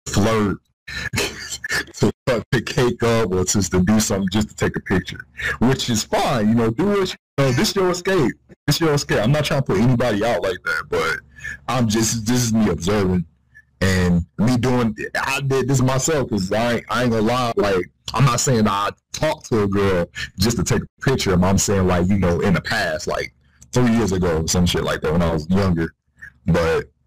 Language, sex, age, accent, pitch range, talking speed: English, male, 30-49, American, 85-120 Hz, 220 wpm